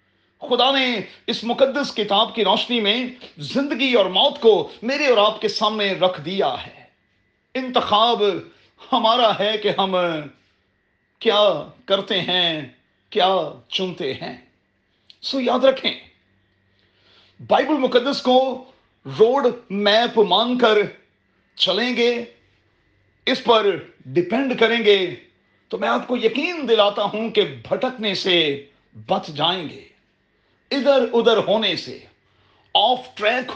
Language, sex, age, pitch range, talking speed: Urdu, male, 40-59, 180-245 Hz, 120 wpm